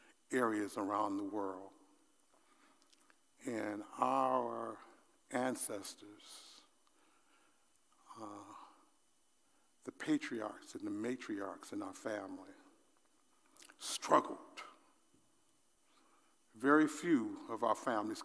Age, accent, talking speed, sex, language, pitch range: 60-79, American, 70 wpm, male, English, 280-320 Hz